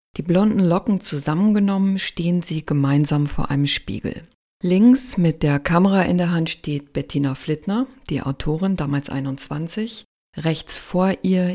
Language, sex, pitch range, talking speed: German, female, 145-190 Hz, 140 wpm